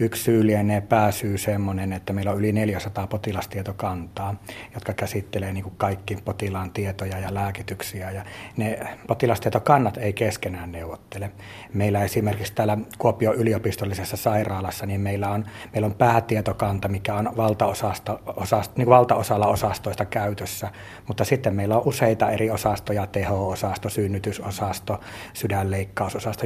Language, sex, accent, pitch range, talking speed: Finnish, male, native, 100-110 Hz, 125 wpm